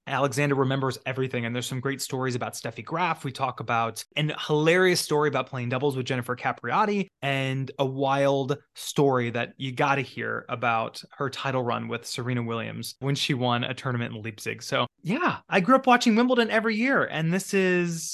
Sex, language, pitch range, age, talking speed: male, English, 130-175 Hz, 20-39, 190 wpm